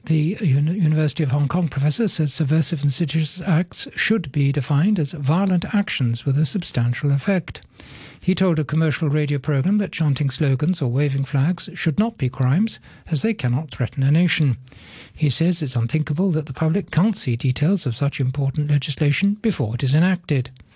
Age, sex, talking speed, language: 60-79, male, 175 wpm, English